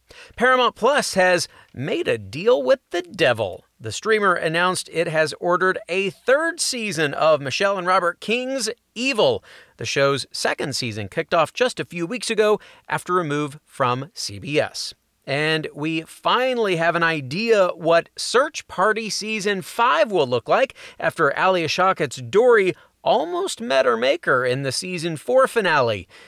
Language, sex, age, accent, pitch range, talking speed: English, male, 40-59, American, 150-220 Hz, 155 wpm